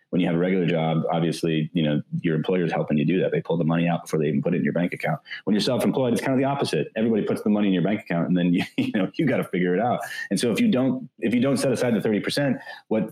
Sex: male